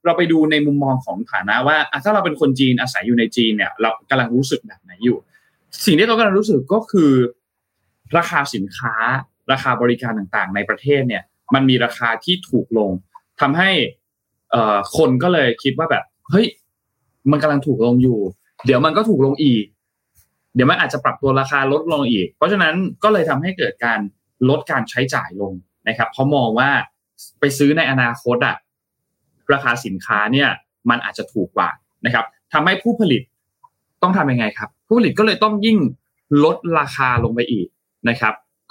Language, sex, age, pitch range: Thai, male, 20-39, 115-155 Hz